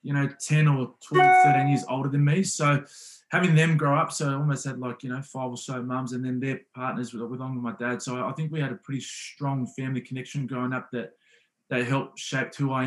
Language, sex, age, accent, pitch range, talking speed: English, male, 20-39, Australian, 125-155 Hz, 245 wpm